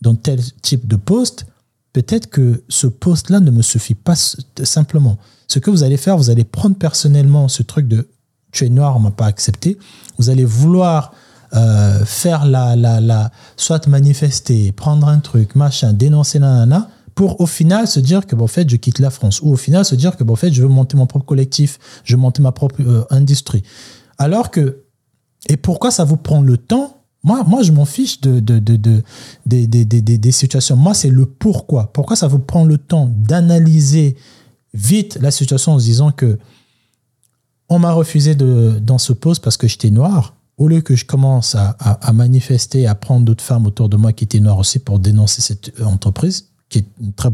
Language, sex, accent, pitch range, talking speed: French, male, French, 115-150 Hz, 210 wpm